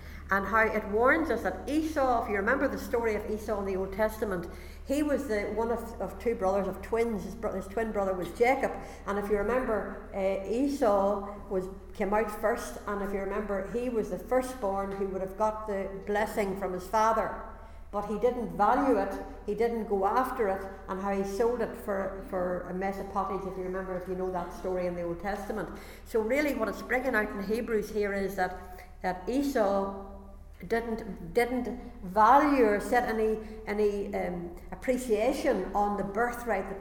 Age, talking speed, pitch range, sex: 60-79, 195 wpm, 195-225 Hz, female